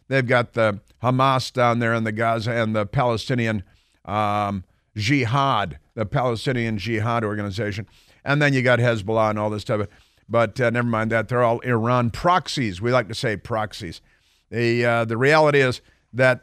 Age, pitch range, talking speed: 50-69, 110-140 Hz, 170 wpm